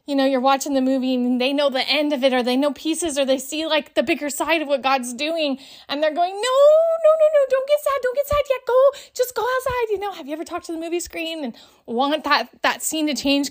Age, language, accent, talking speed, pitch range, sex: 20-39, English, American, 280 wpm, 240-320 Hz, female